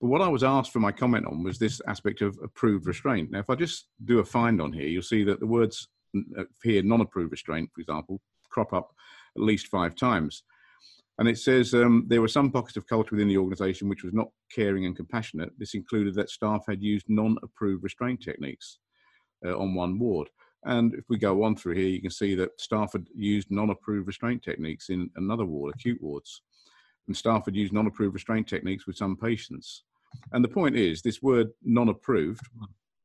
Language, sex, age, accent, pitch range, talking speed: English, male, 50-69, British, 95-115 Hz, 200 wpm